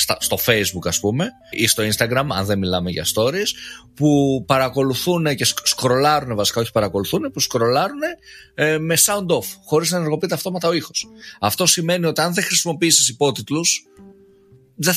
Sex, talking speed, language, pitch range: male, 155 wpm, Greek, 115-170 Hz